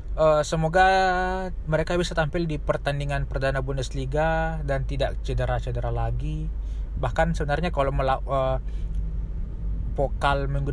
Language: Indonesian